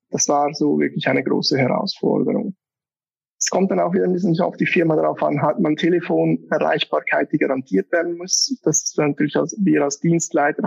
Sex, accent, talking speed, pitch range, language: male, German, 180 wpm, 145-170 Hz, German